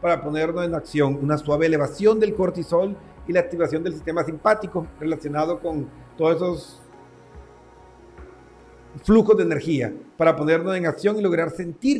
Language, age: Spanish, 40-59